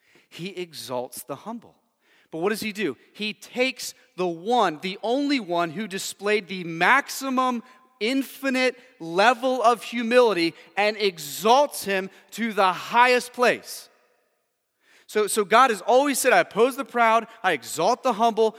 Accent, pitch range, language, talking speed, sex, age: American, 180-245 Hz, English, 145 wpm, male, 30-49